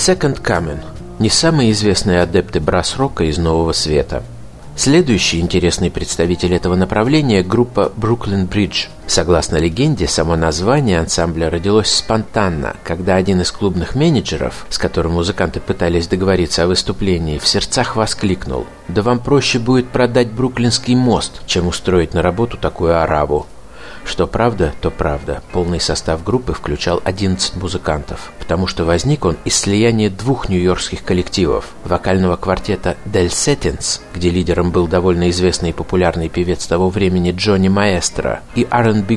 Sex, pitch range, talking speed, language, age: male, 85-105 Hz, 140 wpm, Russian, 50-69